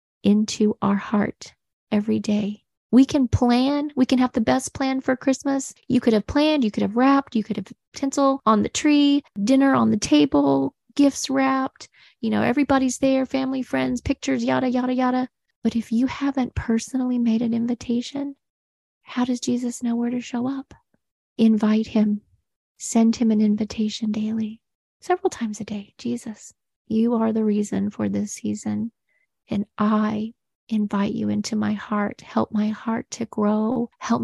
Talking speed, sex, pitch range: 165 wpm, female, 210-255 Hz